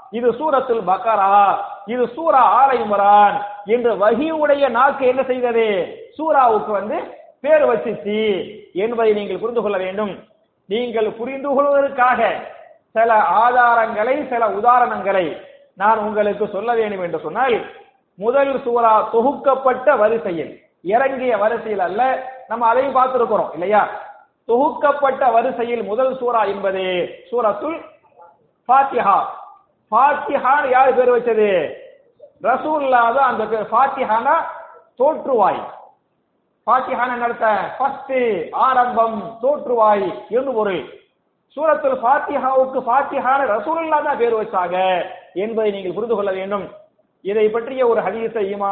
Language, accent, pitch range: Tamil, native, 215-285 Hz